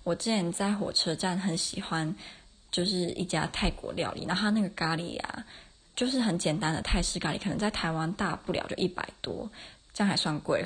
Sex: female